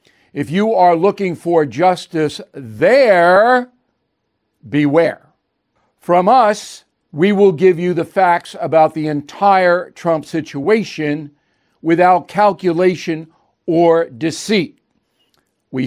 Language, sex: English, male